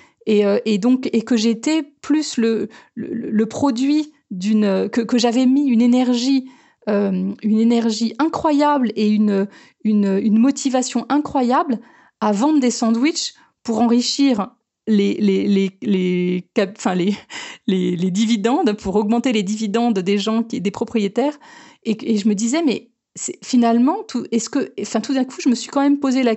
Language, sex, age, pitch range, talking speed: French, female, 30-49, 210-270 Hz, 170 wpm